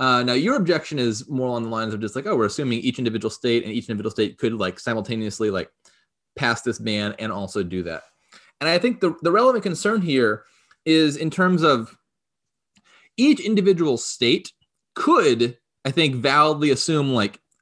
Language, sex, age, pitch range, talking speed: English, male, 30-49, 120-175 Hz, 185 wpm